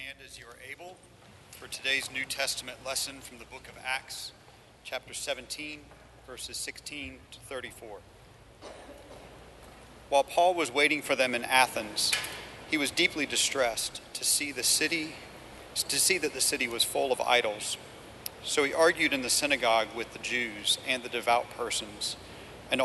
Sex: male